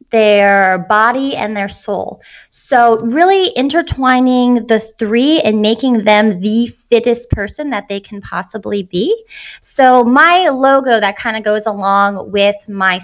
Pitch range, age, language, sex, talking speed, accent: 220-290 Hz, 20-39, English, female, 145 wpm, American